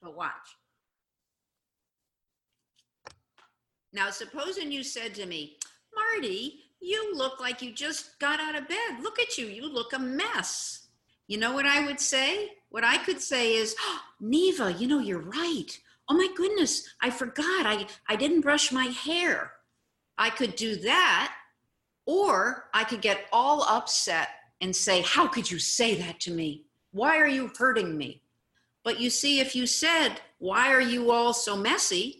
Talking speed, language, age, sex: 165 wpm, English, 50-69, female